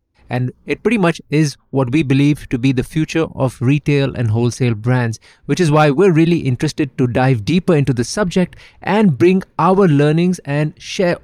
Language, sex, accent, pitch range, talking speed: English, male, Indian, 125-160 Hz, 185 wpm